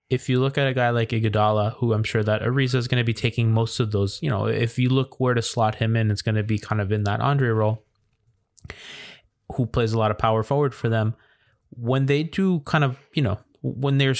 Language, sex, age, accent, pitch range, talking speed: English, male, 20-39, American, 115-130 Hz, 250 wpm